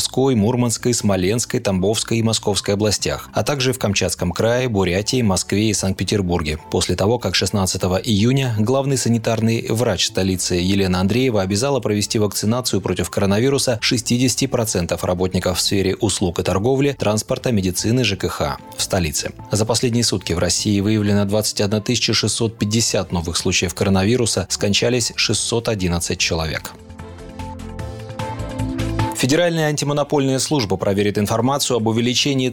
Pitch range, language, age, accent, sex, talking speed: 95-120 Hz, Russian, 30-49, native, male, 120 wpm